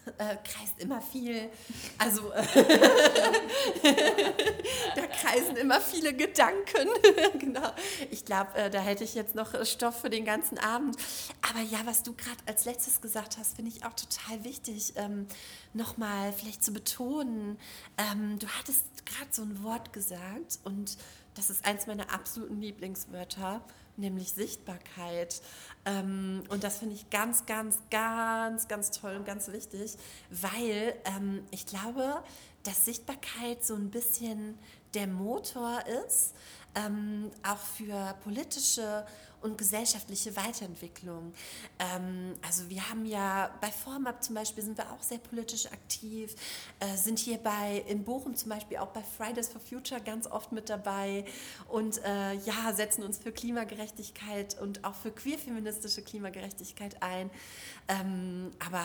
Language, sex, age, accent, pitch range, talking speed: German, female, 30-49, German, 200-230 Hz, 140 wpm